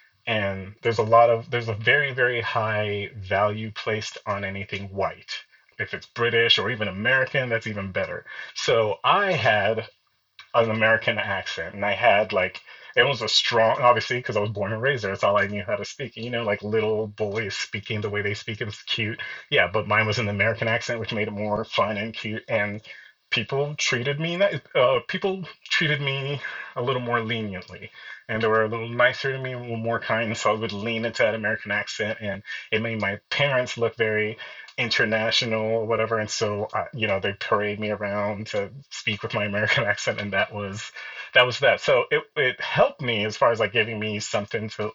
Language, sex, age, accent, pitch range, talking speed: English, male, 30-49, American, 105-120 Hz, 205 wpm